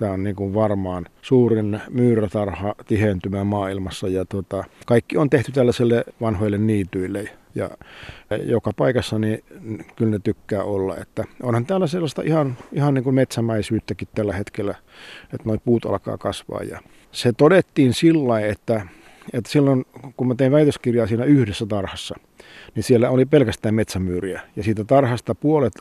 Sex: male